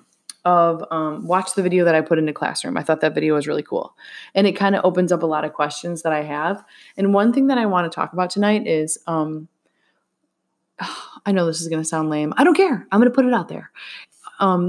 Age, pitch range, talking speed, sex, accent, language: 20-39, 160-200 Hz, 255 wpm, female, American, English